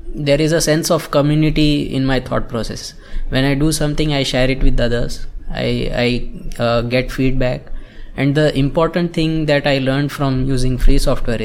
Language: English